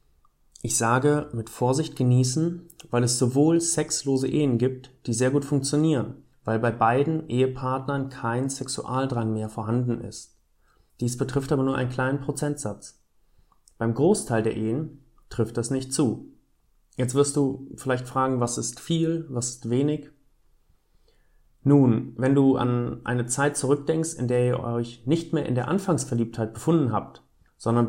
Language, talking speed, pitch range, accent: German, 150 wpm, 115-140 Hz, German